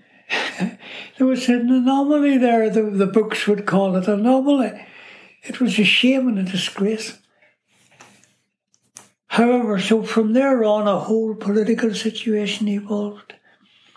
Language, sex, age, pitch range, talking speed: English, male, 60-79, 195-225 Hz, 125 wpm